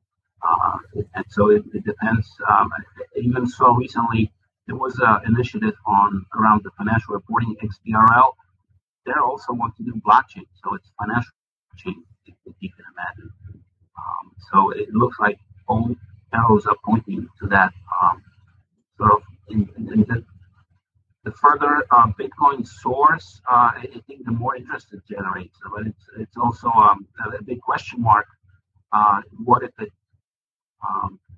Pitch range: 95-110 Hz